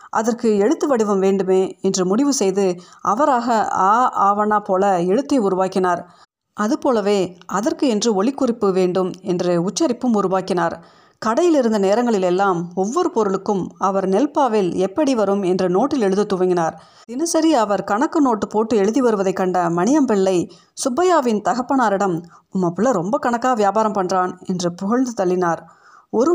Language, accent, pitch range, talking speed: Tamil, native, 185-245 Hz, 125 wpm